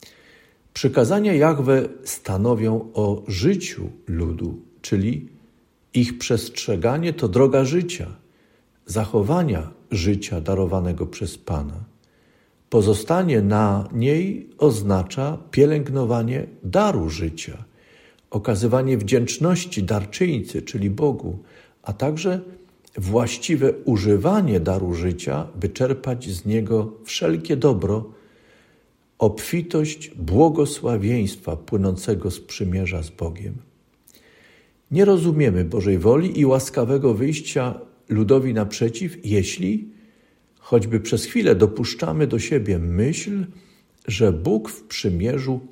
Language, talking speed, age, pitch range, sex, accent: Polish, 90 wpm, 50-69, 100-145 Hz, male, native